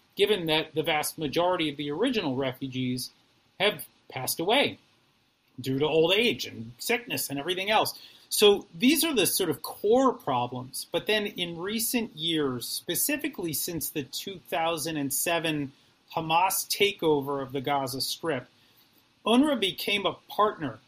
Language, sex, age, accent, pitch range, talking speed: English, male, 30-49, American, 140-175 Hz, 140 wpm